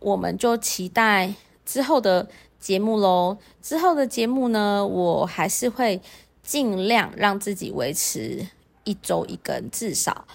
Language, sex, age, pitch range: Chinese, female, 20-39, 185-235 Hz